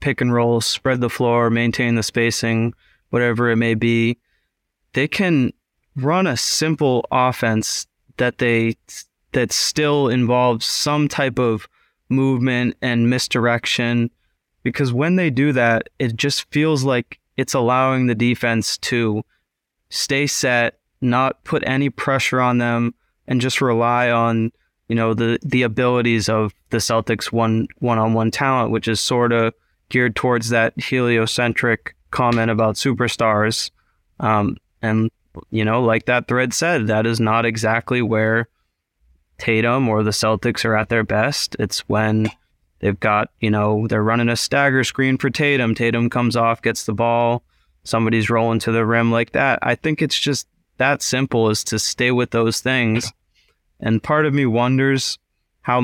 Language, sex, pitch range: English, male, 115-125 Hz